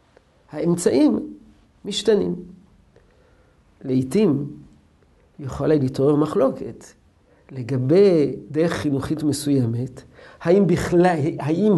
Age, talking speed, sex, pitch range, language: 50-69, 65 wpm, male, 145-195 Hz, Hebrew